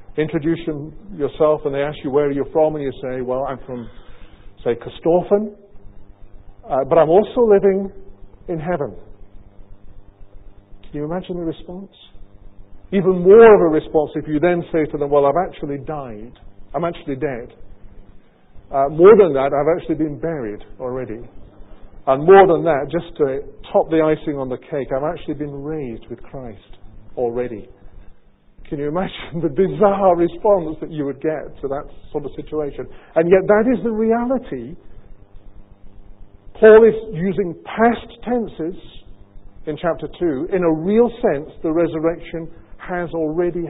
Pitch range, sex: 105-180 Hz, male